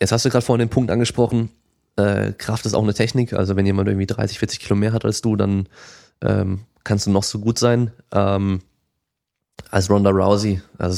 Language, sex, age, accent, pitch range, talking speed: German, male, 20-39, German, 95-115 Hz, 210 wpm